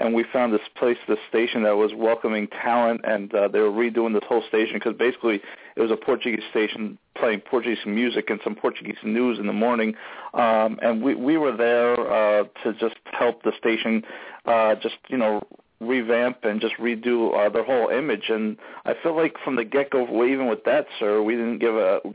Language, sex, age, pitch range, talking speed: English, male, 40-59, 110-125 Hz, 205 wpm